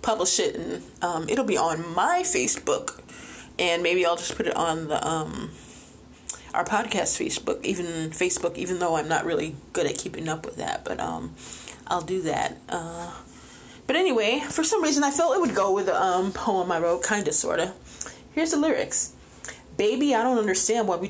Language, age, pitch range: English, 20-39, 165-195 Hz